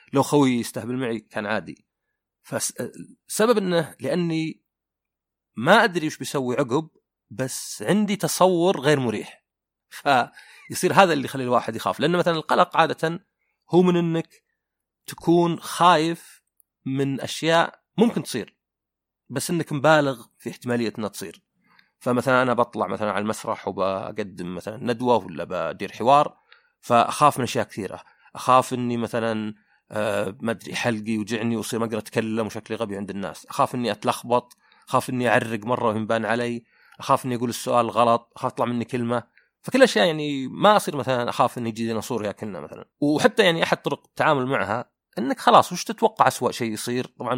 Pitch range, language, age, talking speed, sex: 115-165 Hz, Arabic, 30-49, 155 wpm, male